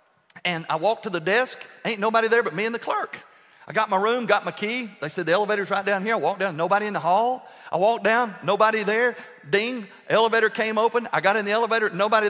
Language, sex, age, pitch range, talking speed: English, male, 50-69, 150-220 Hz, 245 wpm